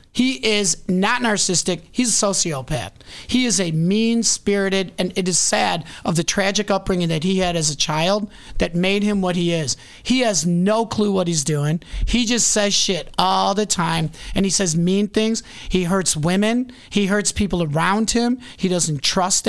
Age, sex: 40-59, male